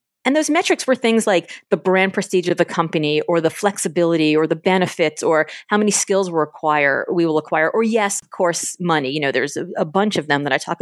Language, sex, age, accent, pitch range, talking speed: English, female, 30-49, American, 170-220 Hz, 240 wpm